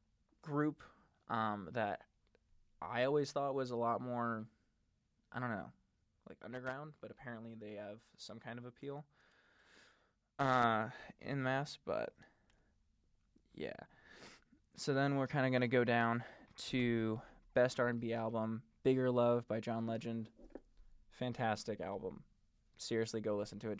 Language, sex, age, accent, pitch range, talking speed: English, male, 20-39, American, 110-135 Hz, 135 wpm